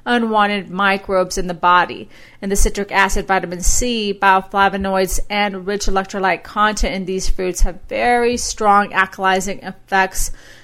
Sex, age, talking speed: female, 30-49, 135 wpm